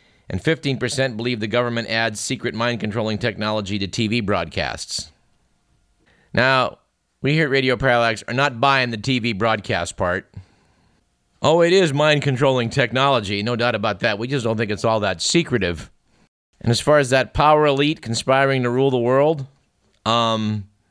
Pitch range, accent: 100-135 Hz, American